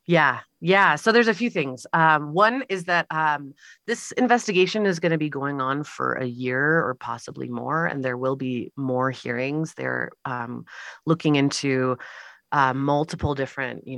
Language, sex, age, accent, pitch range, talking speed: English, female, 30-49, American, 120-155 Hz, 170 wpm